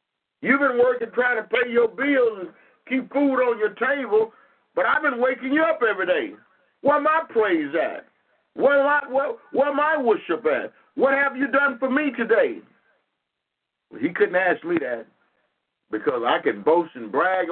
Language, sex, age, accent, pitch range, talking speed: English, male, 50-69, American, 185-265 Hz, 190 wpm